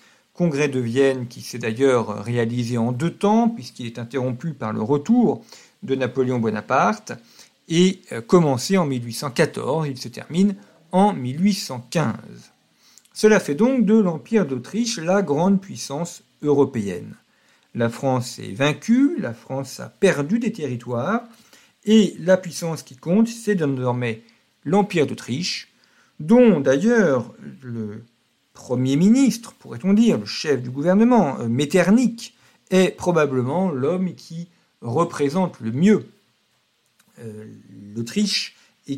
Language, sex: French, male